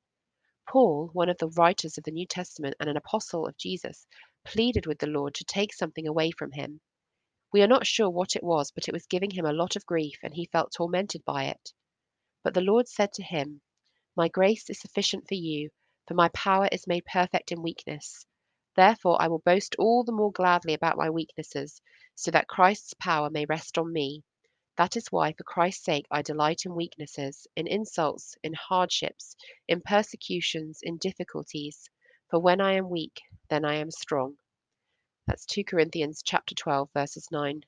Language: English